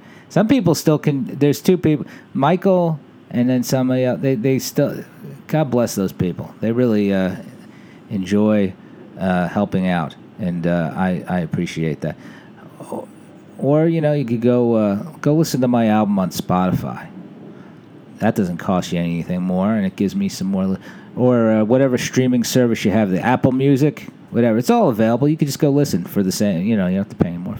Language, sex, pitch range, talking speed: English, male, 105-150 Hz, 195 wpm